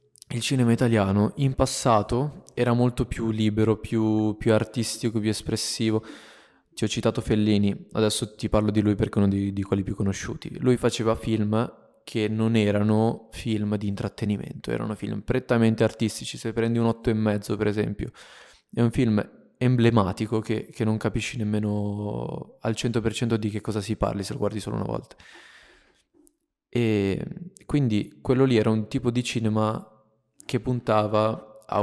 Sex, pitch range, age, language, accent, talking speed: male, 105-120 Hz, 20-39, Italian, native, 160 wpm